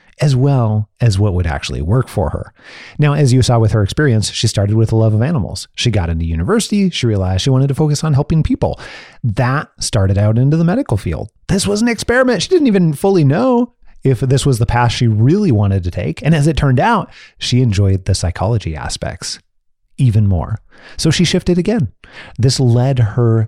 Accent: American